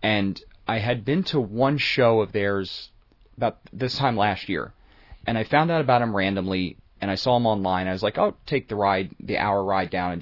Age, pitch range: 30-49, 100-130 Hz